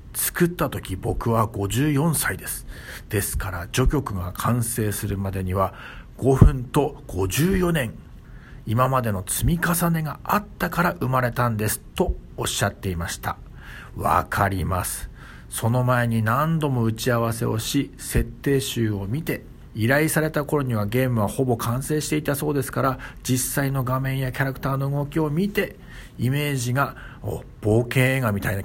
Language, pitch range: Japanese, 105-145 Hz